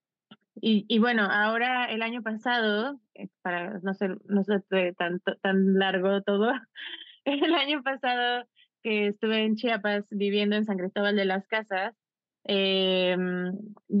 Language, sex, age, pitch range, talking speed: Spanish, female, 20-39, 190-215 Hz, 135 wpm